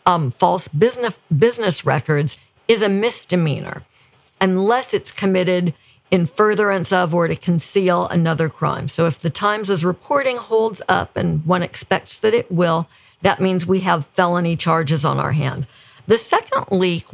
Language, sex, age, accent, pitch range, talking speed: English, female, 50-69, American, 165-195 Hz, 155 wpm